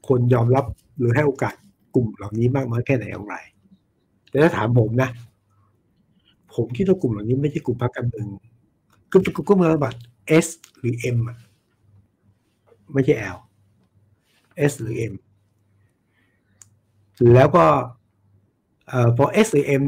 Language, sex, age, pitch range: Thai, male, 60-79, 105-140 Hz